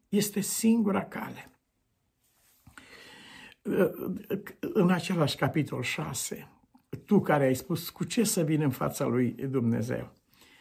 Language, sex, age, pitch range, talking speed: Romanian, male, 60-79, 120-160 Hz, 105 wpm